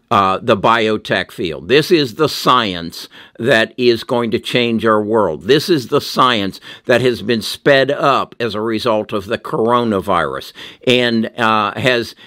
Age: 60-79